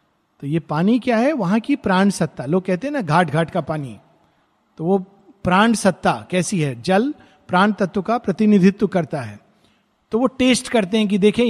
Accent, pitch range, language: native, 170-235 Hz, Hindi